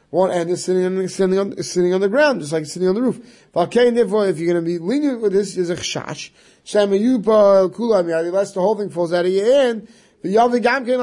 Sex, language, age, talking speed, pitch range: male, English, 30-49, 210 wpm, 155-205 Hz